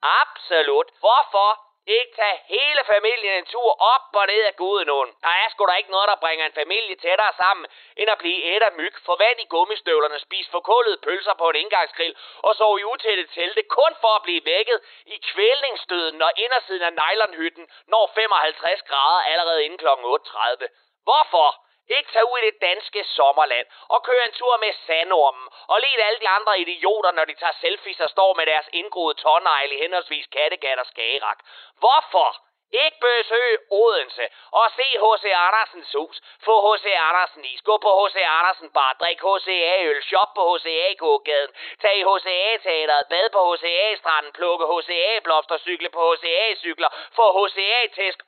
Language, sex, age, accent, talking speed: Danish, male, 30-49, native, 175 wpm